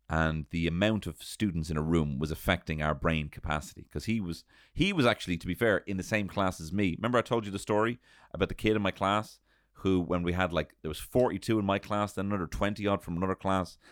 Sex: male